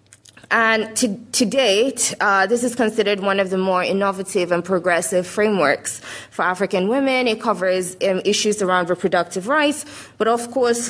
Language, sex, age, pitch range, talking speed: English, female, 20-39, 180-220 Hz, 160 wpm